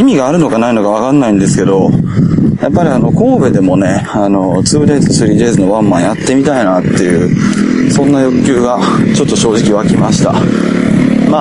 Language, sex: Japanese, male